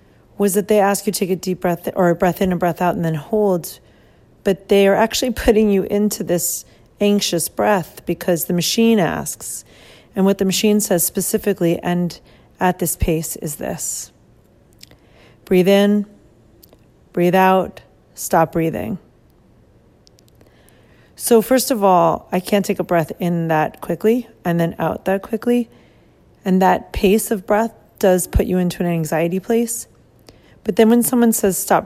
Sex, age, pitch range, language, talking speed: female, 40-59, 170-205 Hz, English, 165 wpm